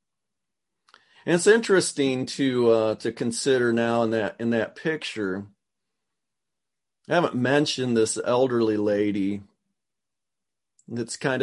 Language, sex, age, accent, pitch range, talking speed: English, male, 40-59, American, 120-155 Hz, 110 wpm